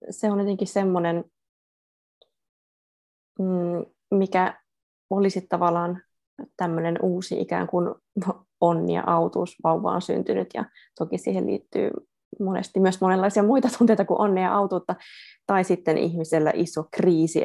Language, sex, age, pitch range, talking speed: Finnish, female, 20-39, 165-195 Hz, 115 wpm